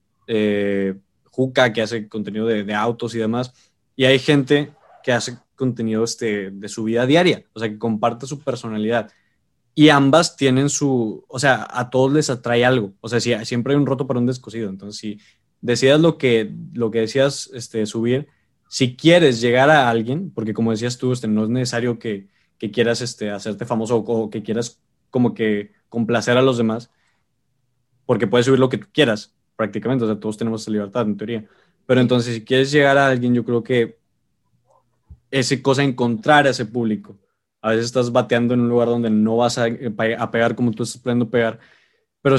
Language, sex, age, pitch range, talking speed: Spanish, male, 20-39, 110-130 Hz, 195 wpm